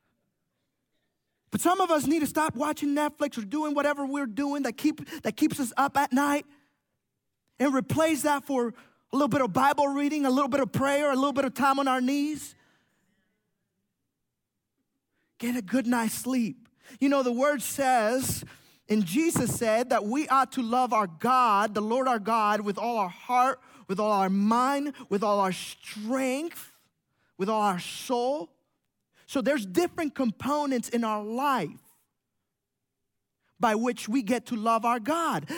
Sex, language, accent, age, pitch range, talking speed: male, English, American, 20-39, 205-285 Hz, 170 wpm